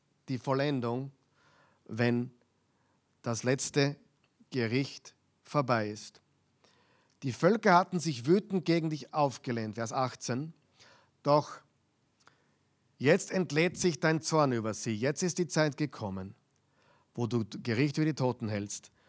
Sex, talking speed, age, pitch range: male, 120 wpm, 50-69, 125-155 Hz